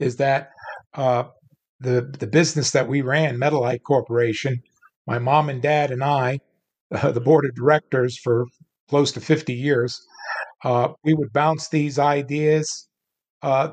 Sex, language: male, English